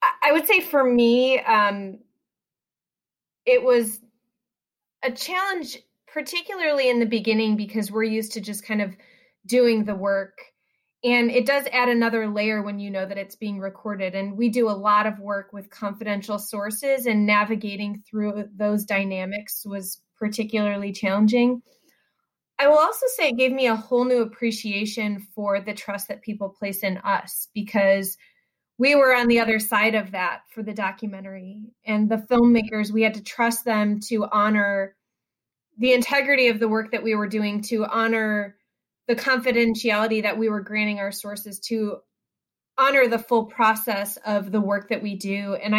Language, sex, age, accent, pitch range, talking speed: English, female, 30-49, American, 205-240 Hz, 165 wpm